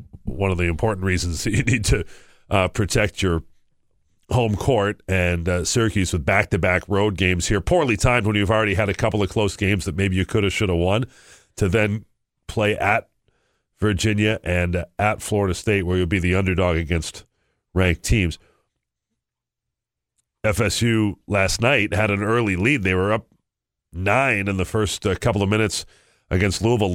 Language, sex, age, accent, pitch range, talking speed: English, male, 40-59, American, 90-110 Hz, 175 wpm